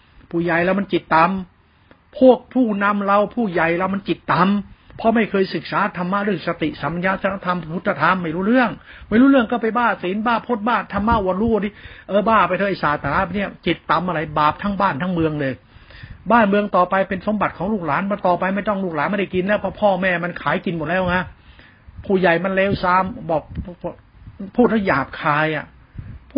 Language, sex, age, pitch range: Thai, male, 60-79, 145-195 Hz